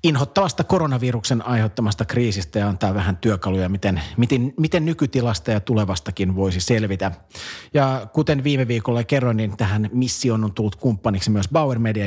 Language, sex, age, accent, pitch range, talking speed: Finnish, male, 40-59, native, 105-125 Hz, 150 wpm